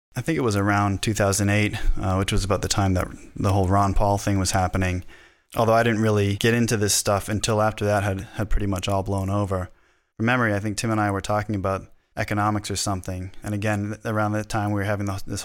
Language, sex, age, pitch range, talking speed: English, male, 20-39, 95-105 Hz, 235 wpm